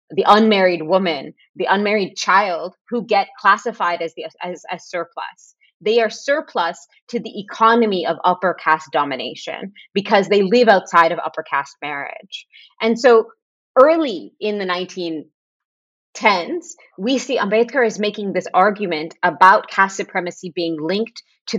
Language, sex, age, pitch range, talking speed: English, female, 30-49, 170-220 Hz, 140 wpm